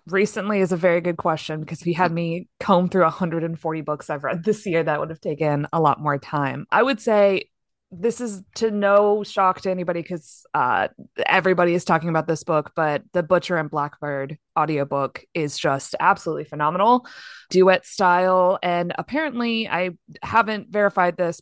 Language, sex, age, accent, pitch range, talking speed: English, female, 20-39, American, 160-205 Hz, 175 wpm